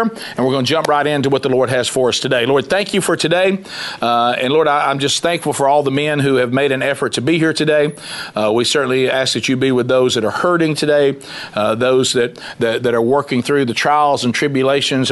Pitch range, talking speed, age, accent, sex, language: 120-145 Hz, 255 wpm, 50-69, American, male, English